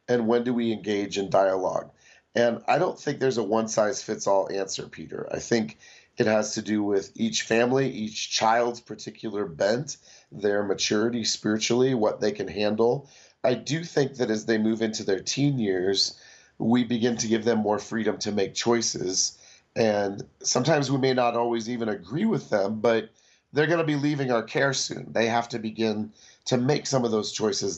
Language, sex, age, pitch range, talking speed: English, male, 30-49, 105-125 Hz, 185 wpm